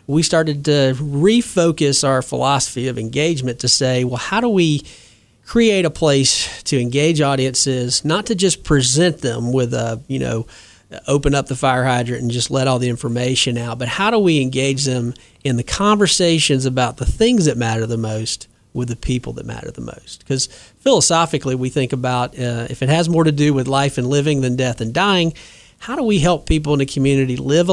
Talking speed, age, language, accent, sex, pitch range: 200 wpm, 40-59, English, American, male, 125-155 Hz